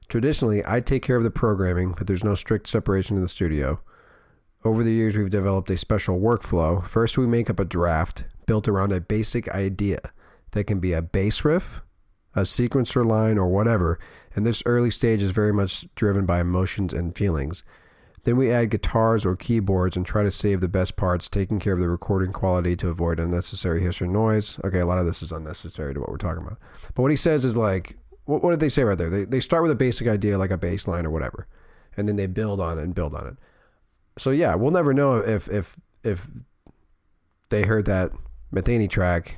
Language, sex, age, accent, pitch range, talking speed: English, male, 40-59, American, 90-115 Hz, 215 wpm